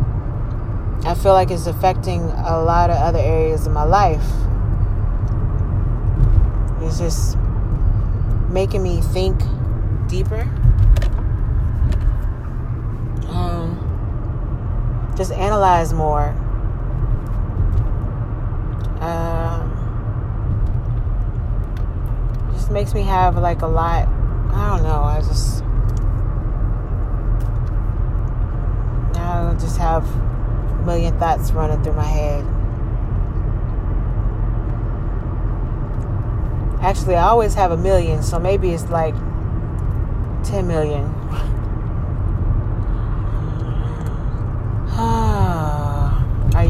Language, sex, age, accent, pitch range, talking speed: English, female, 30-49, American, 100-115 Hz, 75 wpm